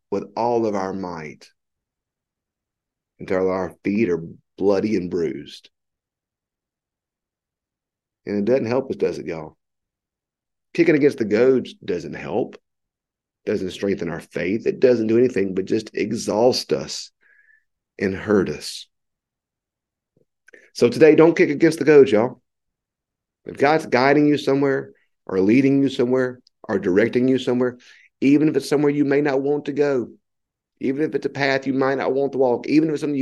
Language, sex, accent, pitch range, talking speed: English, male, American, 105-145 Hz, 155 wpm